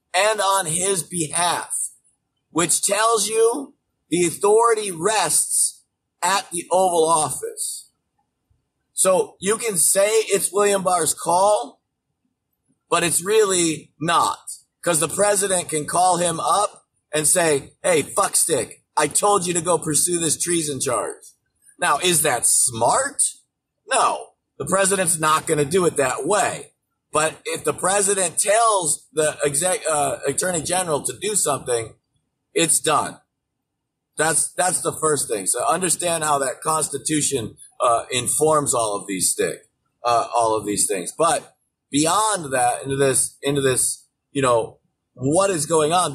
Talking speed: 140 wpm